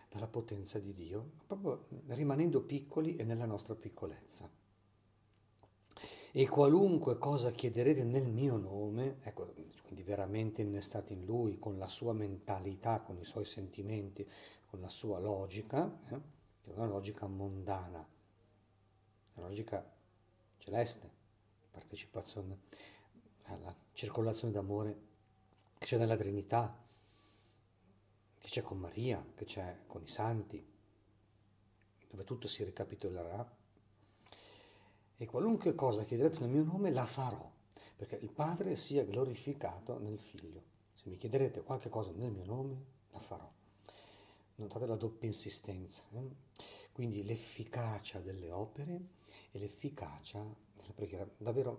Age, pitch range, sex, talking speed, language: 50-69, 100-115 Hz, male, 120 wpm, Italian